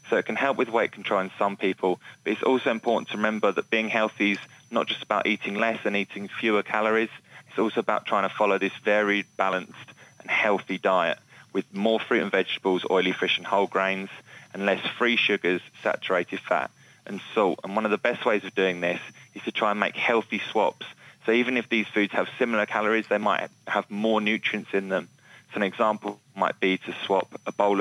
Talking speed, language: 215 wpm, English